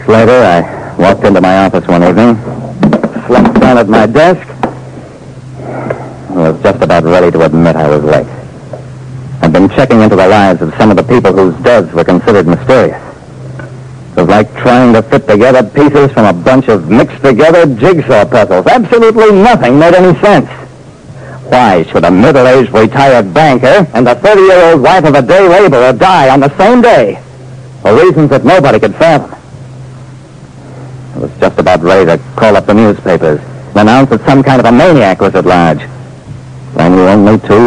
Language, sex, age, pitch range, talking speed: English, male, 60-79, 105-135 Hz, 175 wpm